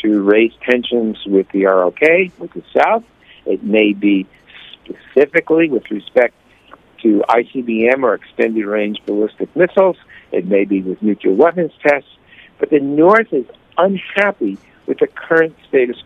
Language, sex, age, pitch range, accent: Korean, male, 60-79, 110-160 Hz, American